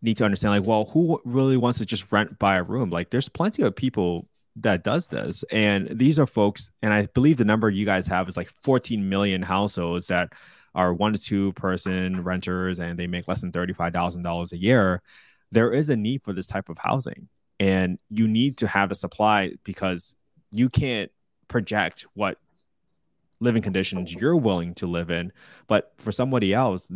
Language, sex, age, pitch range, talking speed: English, male, 20-39, 90-110 Hz, 190 wpm